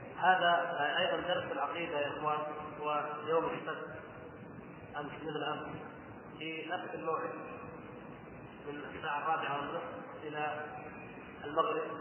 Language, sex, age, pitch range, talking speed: Arabic, male, 30-49, 150-170 Hz, 100 wpm